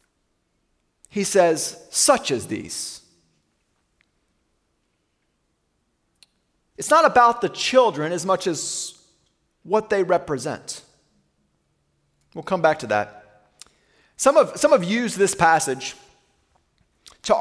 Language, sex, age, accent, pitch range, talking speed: English, male, 30-49, American, 175-250 Hz, 100 wpm